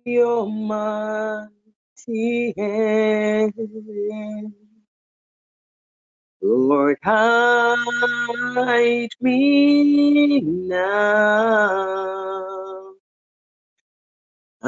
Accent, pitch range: American, 215-320 Hz